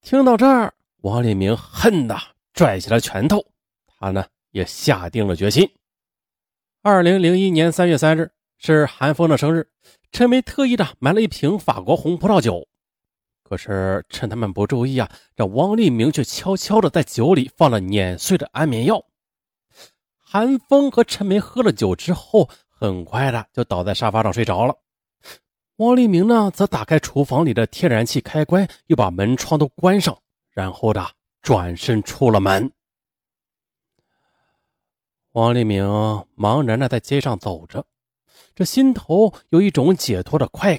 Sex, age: male, 30-49